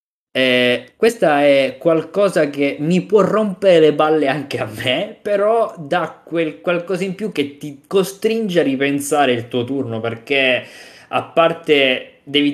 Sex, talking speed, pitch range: male, 145 wpm, 115-155 Hz